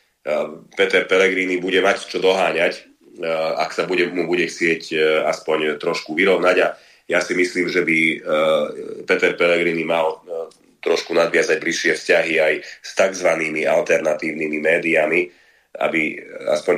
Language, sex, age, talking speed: Slovak, male, 30-49, 125 wpm